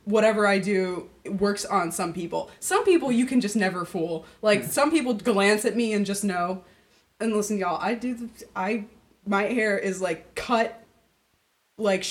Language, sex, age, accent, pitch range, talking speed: English, female, 20-39, American, 180-230 Hz, 185 wpm